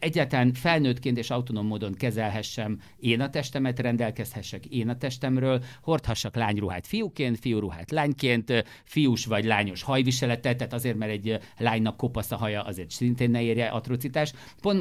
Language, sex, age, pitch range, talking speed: English, male, 50-69, 105-125 Hz, 145 wpm